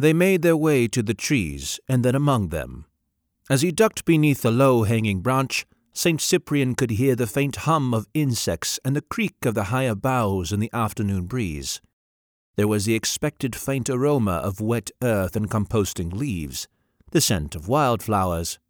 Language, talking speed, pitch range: English, 175 wpm, 100-150 Hz